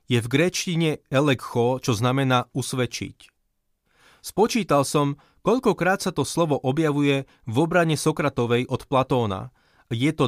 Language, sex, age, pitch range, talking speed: Slovak, male, 30-49, 125-155 Hz, 125 wpm